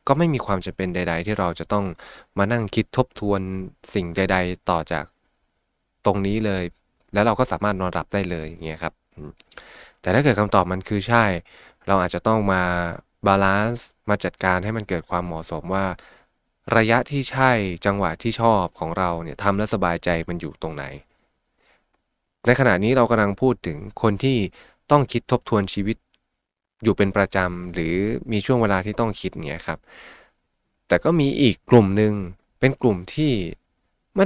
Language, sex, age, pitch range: Thai, male, 20-39, 95-115 Hz